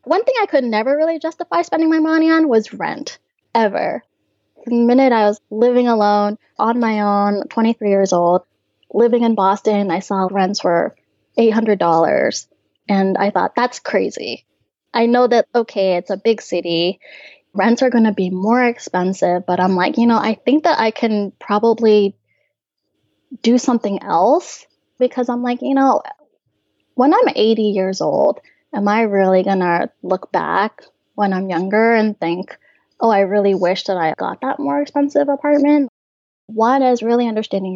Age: 10-29